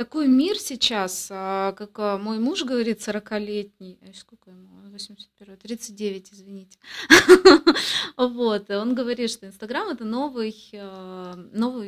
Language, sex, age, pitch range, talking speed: Russian, female, 20-39, 200-245 Hz, 100 wpm